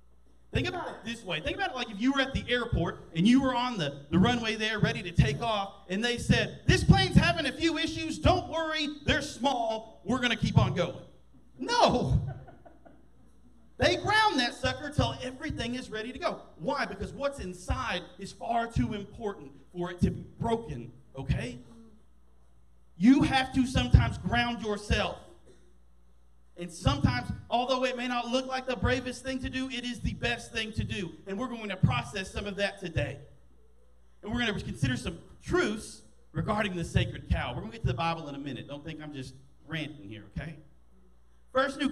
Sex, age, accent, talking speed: male, 40-59, American, 195 wpm